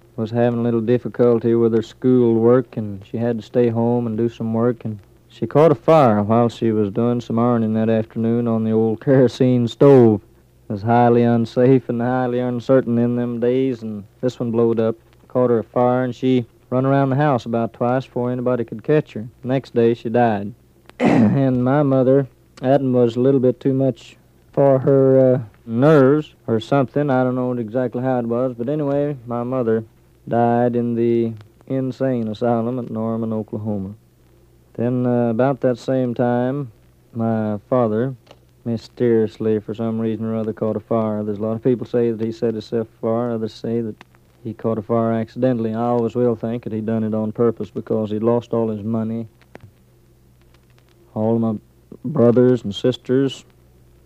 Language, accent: English, American